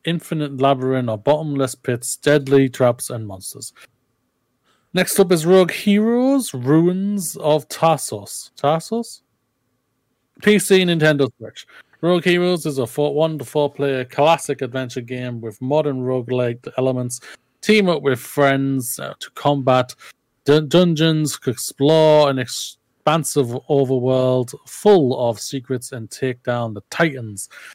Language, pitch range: English, 130-160 Hz